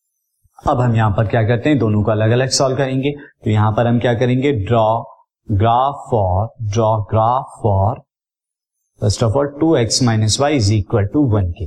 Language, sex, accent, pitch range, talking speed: Hindi, male, native, 110-145 Hz, 180 wpm